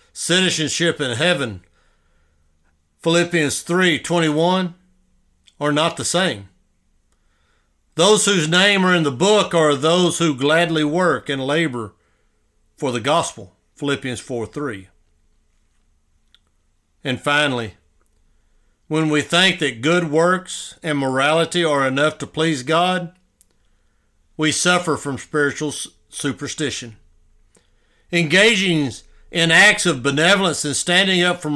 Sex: male